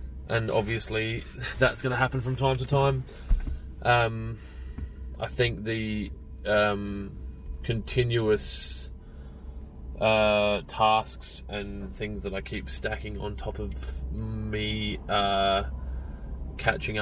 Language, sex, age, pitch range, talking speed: English, male, 20-39, 65-110 Hz, 100 wpm